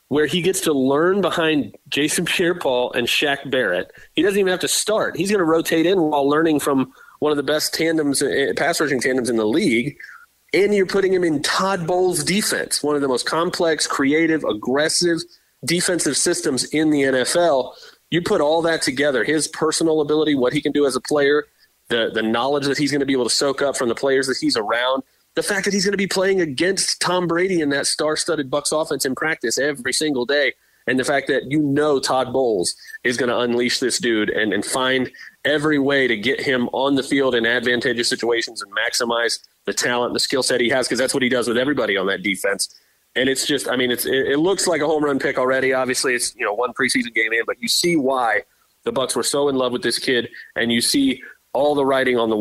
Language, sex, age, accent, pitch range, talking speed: English, male, 30-49, American, 130-170 Hz, 230 wpm